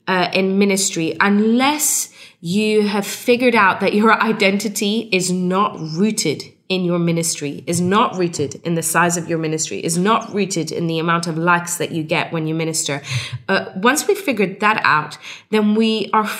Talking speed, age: 180 wpm, 20-39